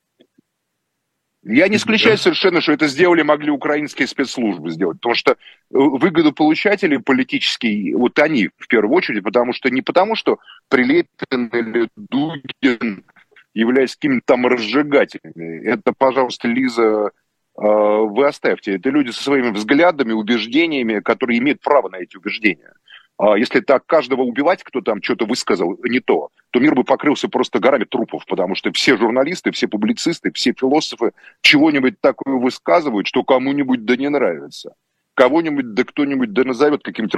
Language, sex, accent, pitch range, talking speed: Russian, male, native, 125-205 Hz, 140 wpm